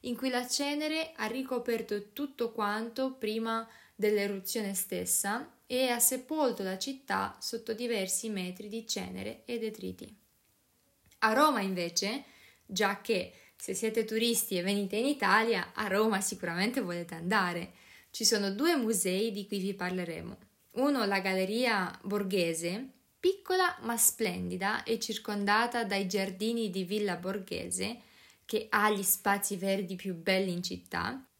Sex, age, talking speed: female, 20-39, 135 wpm